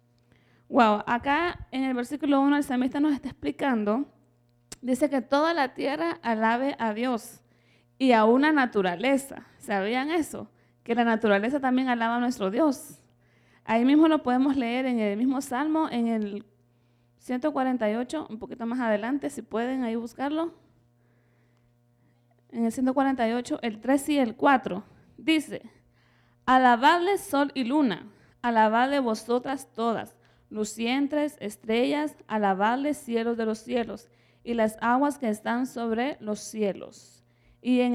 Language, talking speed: English, 135 wpm